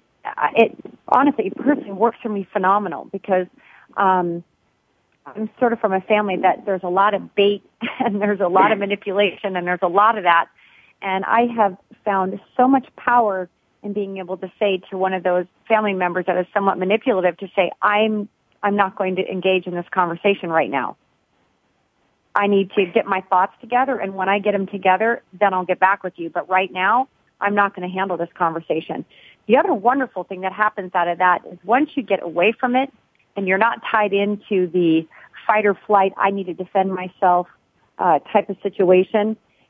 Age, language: 40-59, English